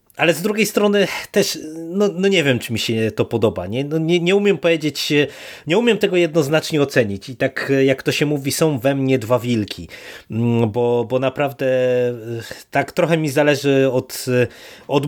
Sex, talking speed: male, 180 wpm